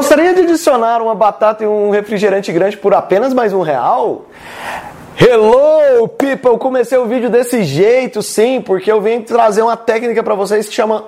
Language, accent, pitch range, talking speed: Portuguese, Brazilian, 170-225 Hz, 175 wpm